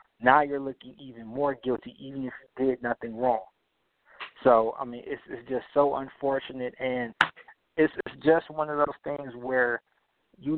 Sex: male